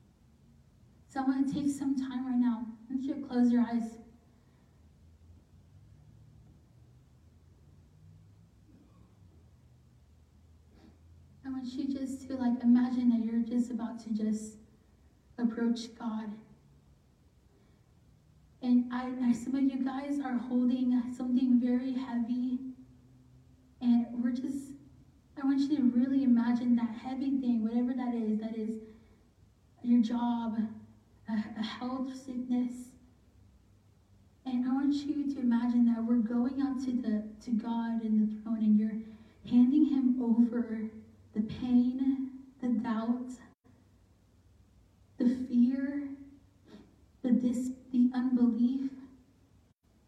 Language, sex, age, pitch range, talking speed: English, female, 10-29, 215-260 Hz, 115 wpm